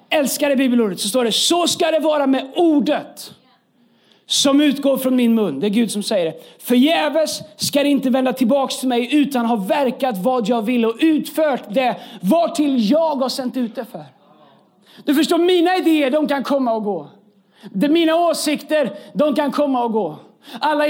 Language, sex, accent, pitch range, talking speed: Swedish, male, native, 250-300 Hz, 190 wpm